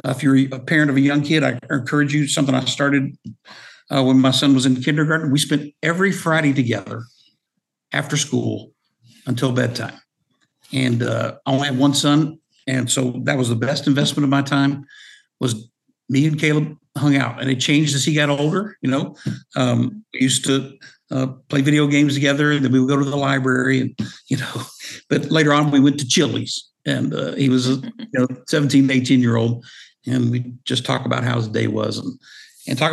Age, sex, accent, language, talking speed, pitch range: 60-79, male, American, English, 200 wpm, 125-145 Hz